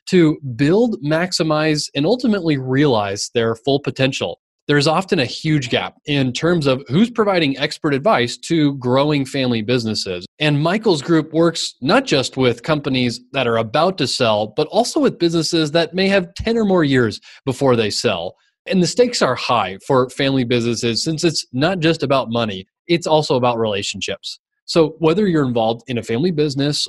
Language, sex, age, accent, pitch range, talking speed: English, male, 20-39, American, 125-170 Hz, 175 wpm